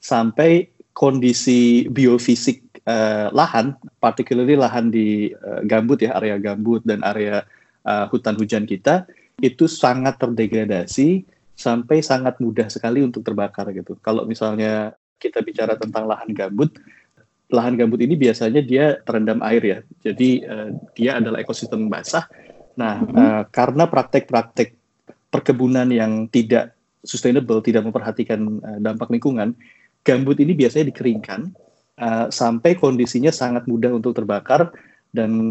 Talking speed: 125 wpm